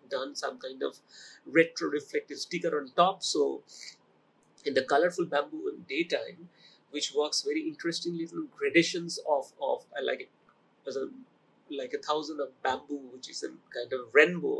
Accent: Indian